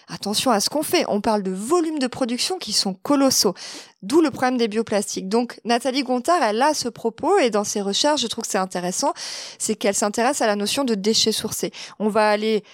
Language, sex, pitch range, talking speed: French, female, 205-270 Hz, 220 wpm